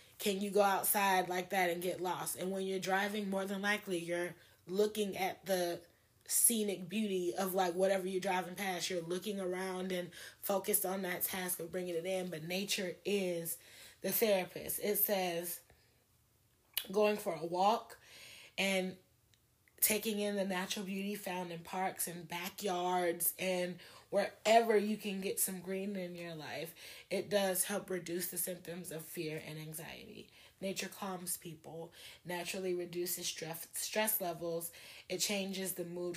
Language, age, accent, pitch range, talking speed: English, 20-39, American, 175-195 Hz, 155 wpm